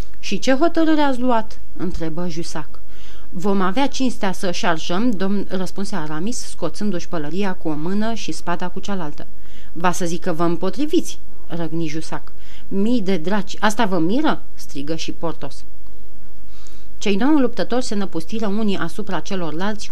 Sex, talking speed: female, 150 wpm